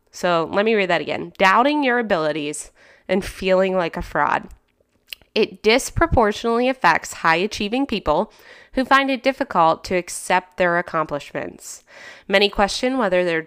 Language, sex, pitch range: English, female, 165-215 Hz